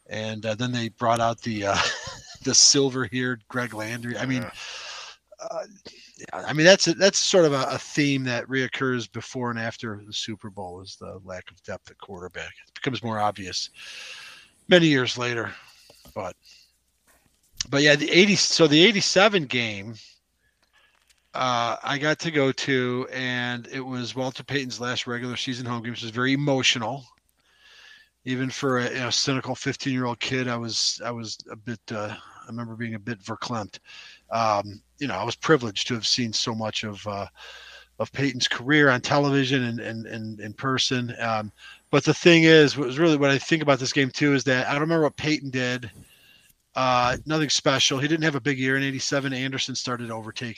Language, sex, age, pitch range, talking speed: English, male, 40-59, 115-140 Hz, 185 wpm